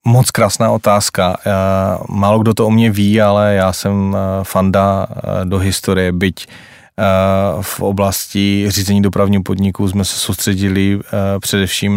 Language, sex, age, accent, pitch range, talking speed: Czech, male, 20-39, native, 95-100 Hz, 125 wpm